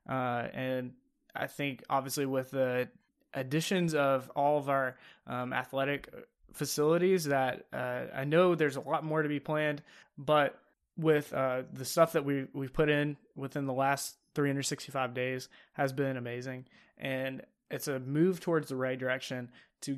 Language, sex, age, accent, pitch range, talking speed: English, male, 20-39, American, 130-150 Hz, 155 wpm